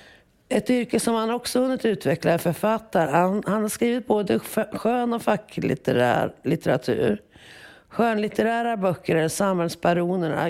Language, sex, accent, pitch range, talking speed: Swedish, female, native, 160-195 Hz, 120 wpm